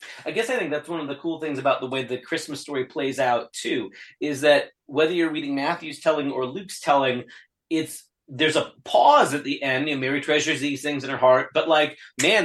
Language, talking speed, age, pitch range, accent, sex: English, 230 wpm, 30-49, 130-155 Hz, American, male